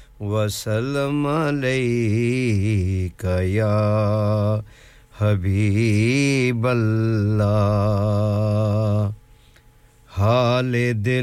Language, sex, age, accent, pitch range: English, male, 50-69, Indian, 105-145 Hz